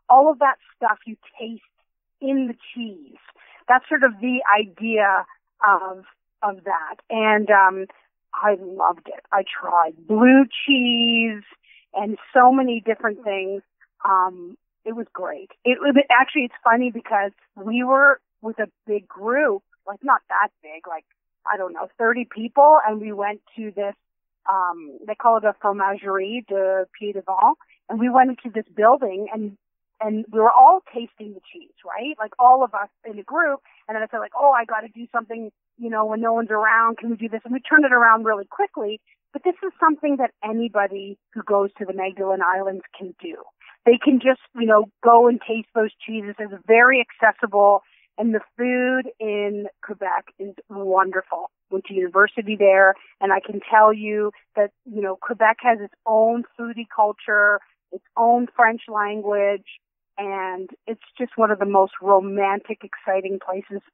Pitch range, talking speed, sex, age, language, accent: 200-240 Hz, 175 wpm, female, 30-49, English, American